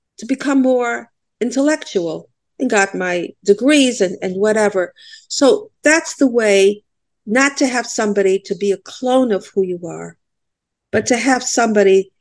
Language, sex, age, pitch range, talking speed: English, female, 50-69, 190-250 Hz, 150 wpm